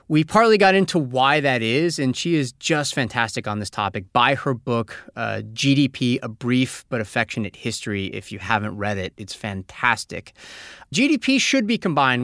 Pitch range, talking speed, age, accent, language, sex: 115-185 Hz, 175 wpm, 30-49, American, English, male